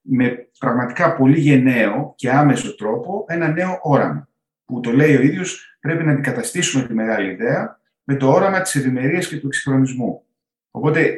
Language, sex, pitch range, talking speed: Greek, male, 120-150 Hz, 160 wpm